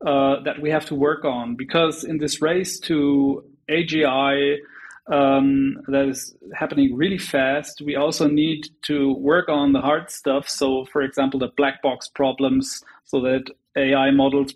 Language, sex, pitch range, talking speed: English, male, 140-170 Hz, 160 wpm